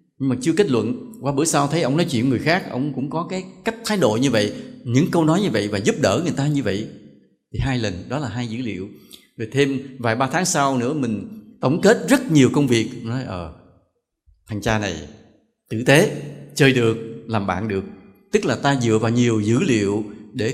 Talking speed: 230 wpm